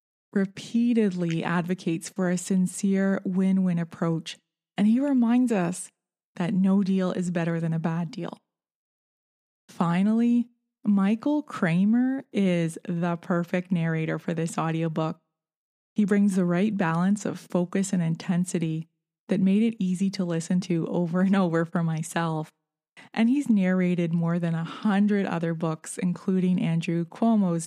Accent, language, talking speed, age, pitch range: American, English, 135 wpm, 20-39, 170-215 Hz